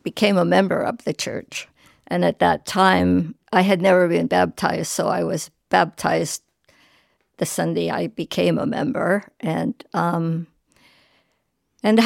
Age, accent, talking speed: 60-79, American, 140 wpm